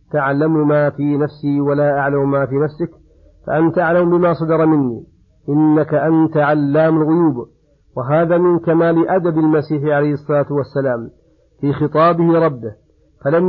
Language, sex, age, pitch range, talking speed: Arabic, male, 50-69, 140-155 Hz, 135 wpm